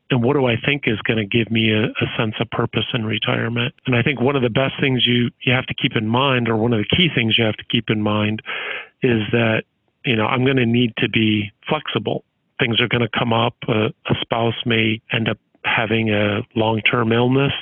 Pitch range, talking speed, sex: 115-130 Hz, 240 wpm, male